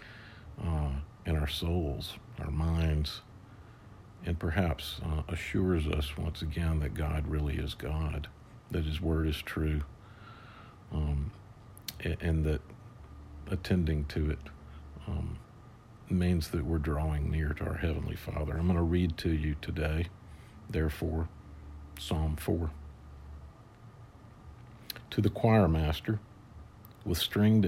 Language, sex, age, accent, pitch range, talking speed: English, male, 50-69, American, 75-105 Hz, 120 wpm